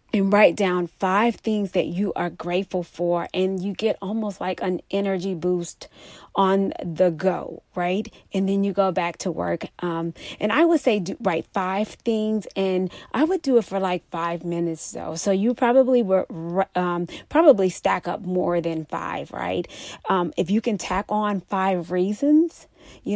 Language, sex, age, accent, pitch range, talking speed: English, female, 30-49, American, 180-215 Hz, 180 wpm